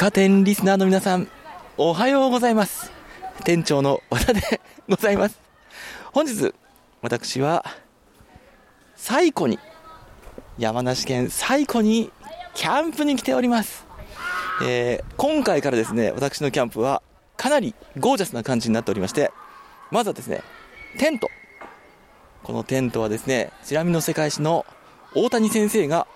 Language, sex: Japanese, male